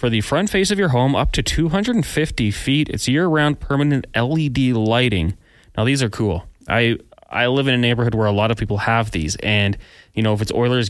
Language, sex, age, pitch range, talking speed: English, male, 20-39, 100-125 Hz, 215 wpm